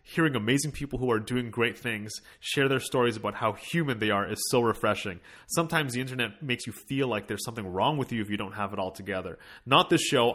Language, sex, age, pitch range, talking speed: English, male, 30-49, 110-135 Hz, 240 wpm